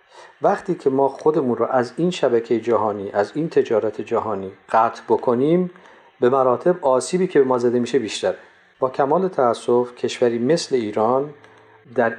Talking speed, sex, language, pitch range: 155 wpm, male, Persian, 120-180 Hz